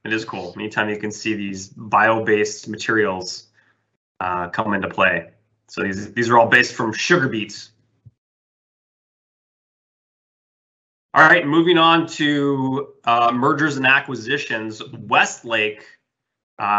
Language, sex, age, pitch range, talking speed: English, male, 20-39, 105-125 Hz, 120 wpm